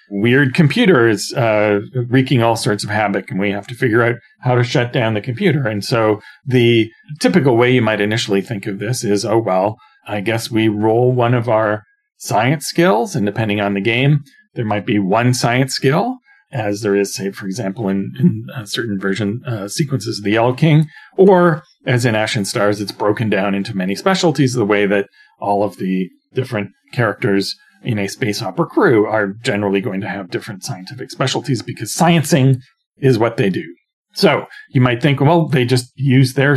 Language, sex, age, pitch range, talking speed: English, male, 40-59, 105-135 Hz, 190 wpm